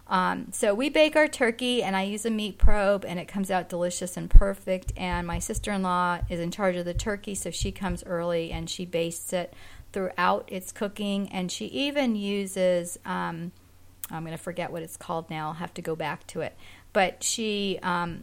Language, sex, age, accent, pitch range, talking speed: English, female, 40-59, American, 175-200 Hz, 205 wpm